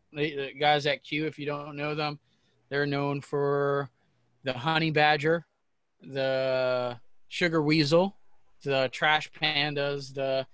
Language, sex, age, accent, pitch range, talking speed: English, male, 20-39, American, 135-150 Hz, 125 wpm